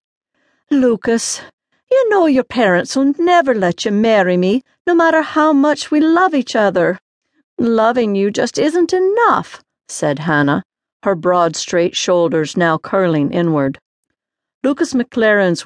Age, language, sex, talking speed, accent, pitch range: 50-69, English, female, 135 wpm, American, 165-240 Hz